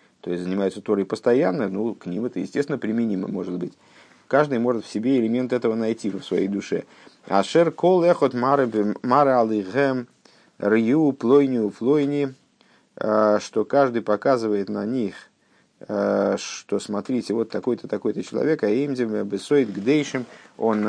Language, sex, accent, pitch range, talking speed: Russian, male, native, 105-140 Hz, 140 wpm